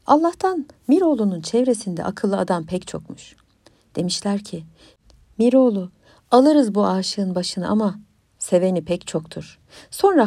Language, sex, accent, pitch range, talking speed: Turkish, female, native, 175-255 Hz, 110 wpm